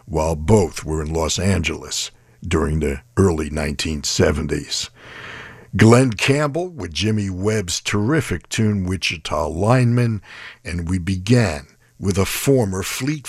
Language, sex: English, male